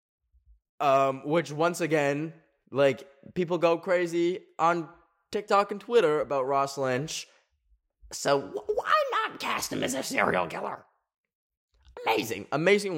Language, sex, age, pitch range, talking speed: English, male, 10-29, 135-200 Hz, 120 wpm